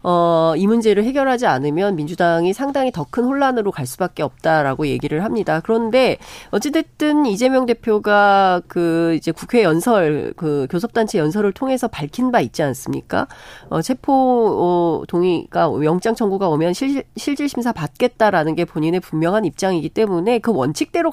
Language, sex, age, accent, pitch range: Korean, female, 40-59, native, 165-245 Hz